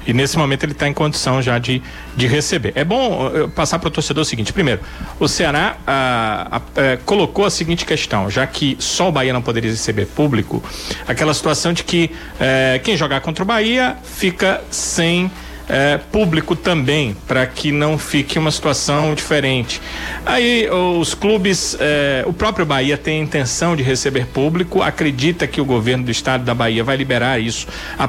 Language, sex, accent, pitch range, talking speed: Portuguese, male, Brazilian, 135-175 Hz, 180 wpm